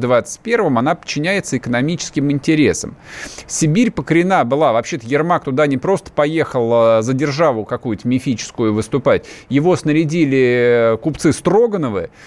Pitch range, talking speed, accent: 150-200 Hz, 115 wpm, native